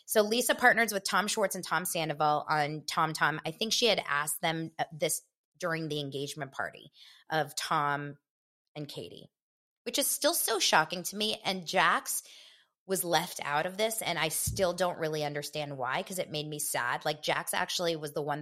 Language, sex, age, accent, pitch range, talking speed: English, female, 20-39, American, 155-200 Hz, 190 wpm